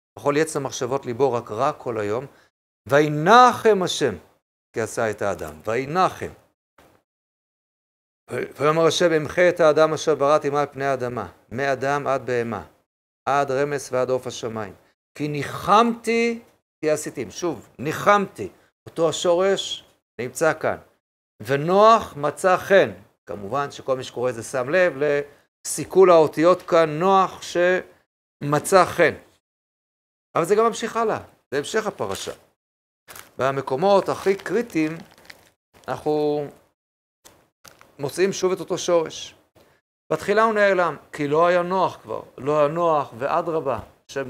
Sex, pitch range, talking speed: male, 140-185 Hz, 115 wpm